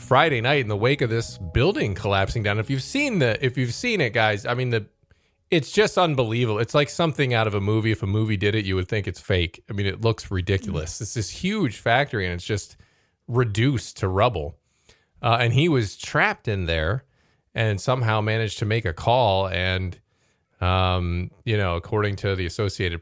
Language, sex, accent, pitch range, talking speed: English, male, American, 95-125 Hz, 205 wpm